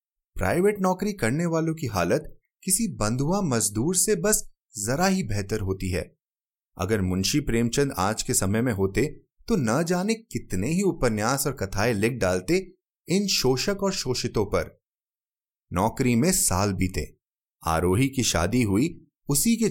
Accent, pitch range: native, 100-160 Hz